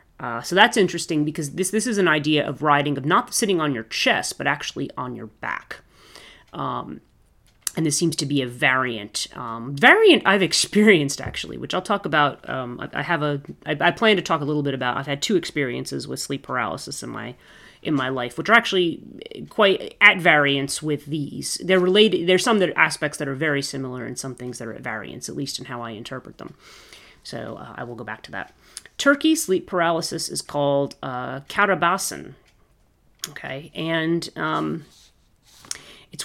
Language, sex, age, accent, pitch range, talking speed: English, female, 30-49, American, 135-175 Hz, 195 wpm